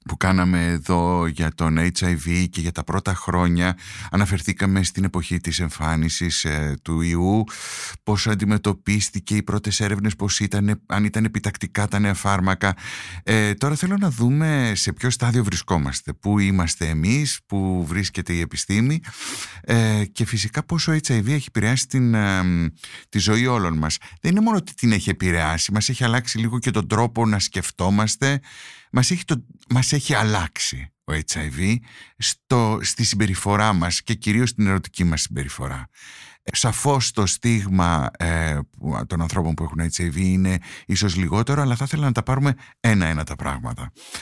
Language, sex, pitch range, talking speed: Greek, male, 90-125 Hz, 155 wpm